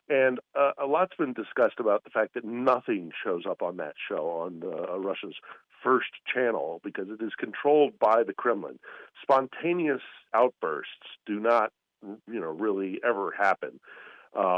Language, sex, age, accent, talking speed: English, male, 50-69, American, 155 wpm